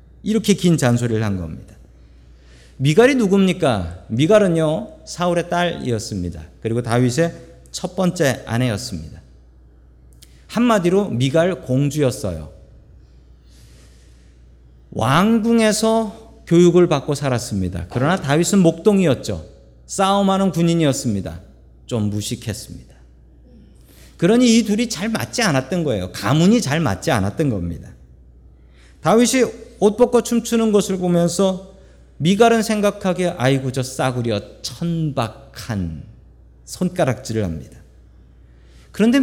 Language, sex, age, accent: Korean, male, 40-59, native